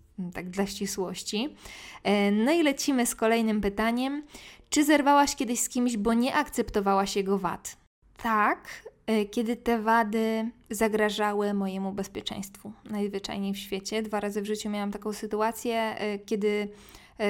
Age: 20-39